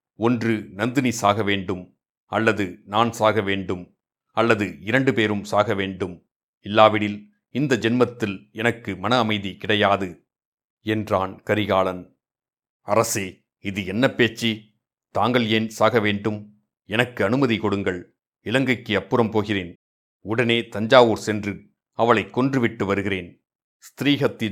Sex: male